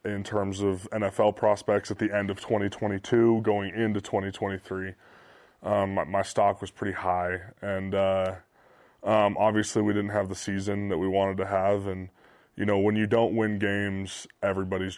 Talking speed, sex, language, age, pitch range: 170 wpm, male, English, 20-39, 95-105 Hz